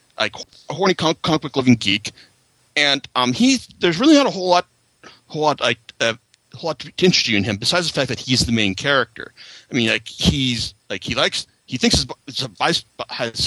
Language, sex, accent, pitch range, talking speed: English, male, American, 120-160 Hz, 215 wpm